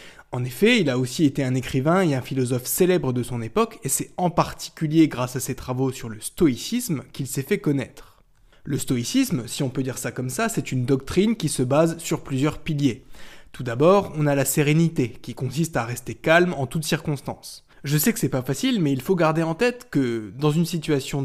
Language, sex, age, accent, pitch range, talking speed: French, male, 20-39, French, 130-170 Hz, 220 wpm